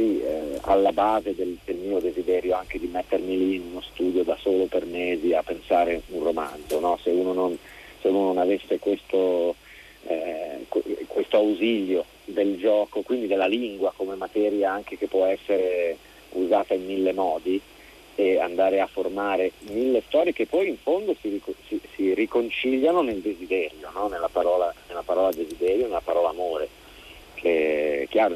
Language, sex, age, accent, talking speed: Italian, male, 40-59, native, 150 wpm